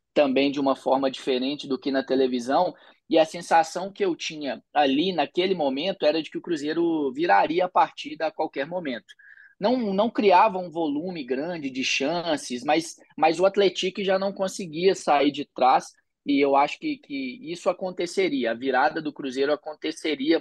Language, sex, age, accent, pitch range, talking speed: Portuguese, male, 20-39, Brazilian, 140-195 Hz, 175 wpm